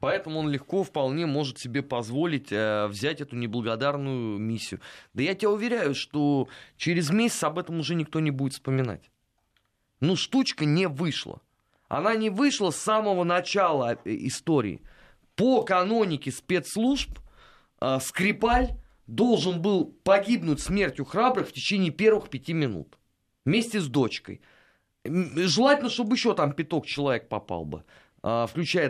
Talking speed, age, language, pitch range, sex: 130 wpm, 20-39, Russian, 135-200 Hz, male